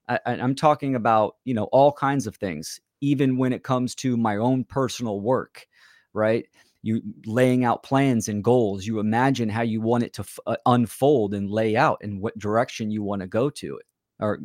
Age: 30-49